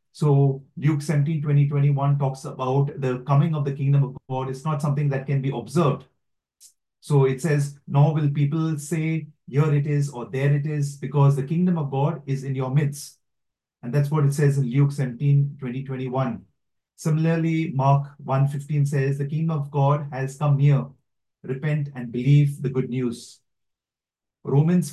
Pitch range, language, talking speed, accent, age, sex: 135-155 Hz, English, 175 wpm, Indian, 40-59, male